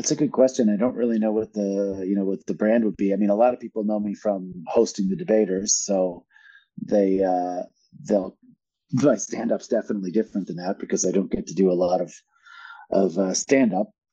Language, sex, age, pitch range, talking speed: English, male, 40-59, 95-115 Hz, 225 wpm